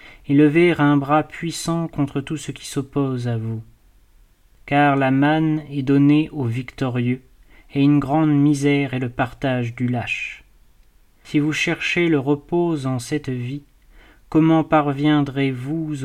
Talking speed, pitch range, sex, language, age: 140 wpm, 125-145 Hz, male, French, 30-49